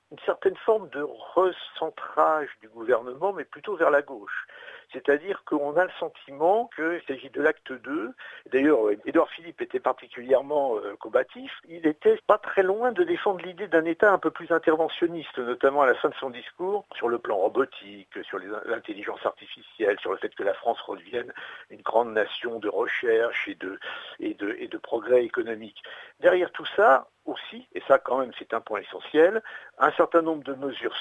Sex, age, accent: male, 60-79, French